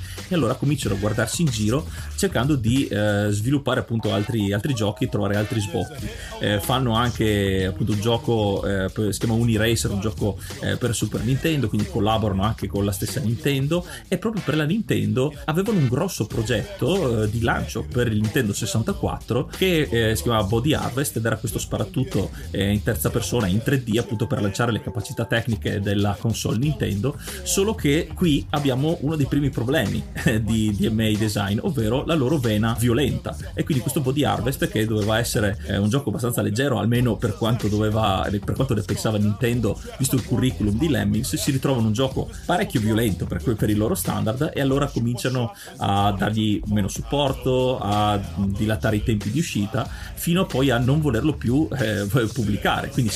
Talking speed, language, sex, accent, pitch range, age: 175 wpm, Italian, male, native, 105-135 Hz, 30-49